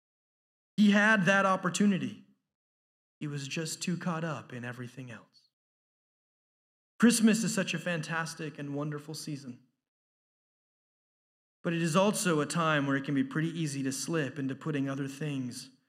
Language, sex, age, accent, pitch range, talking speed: English, male, 30-49, American, 140-185 Hz, 145 wpm